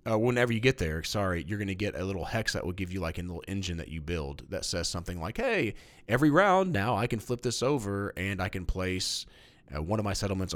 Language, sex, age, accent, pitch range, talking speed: English, male, 30-49, American, 95-130 Hz, 260 wpm